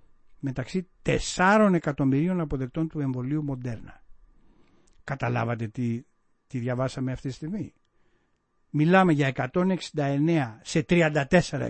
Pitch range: 135-190 Hz